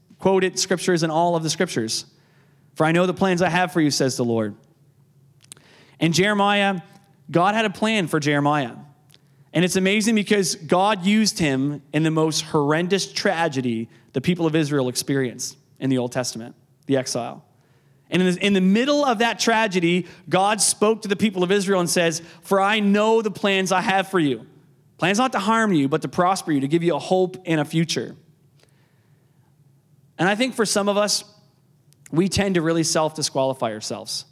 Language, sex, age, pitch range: English, male, 30-49, 145-200 Hz